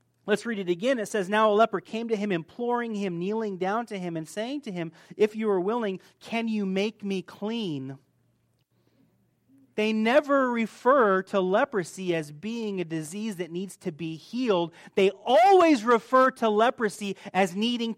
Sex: male